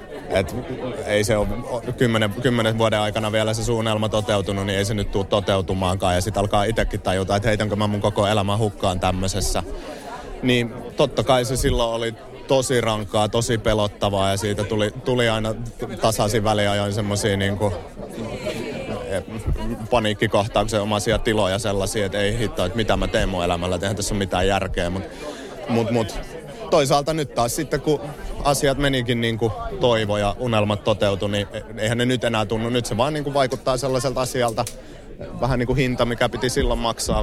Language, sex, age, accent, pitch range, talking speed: Finnish, male, 30-49, native, 100-120 Hz, 170 wpm